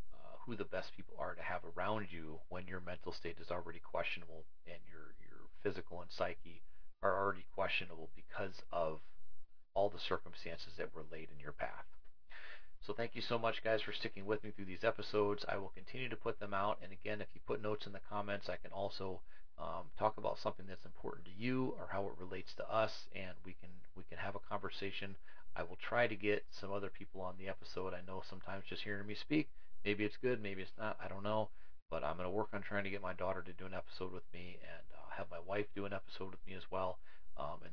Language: English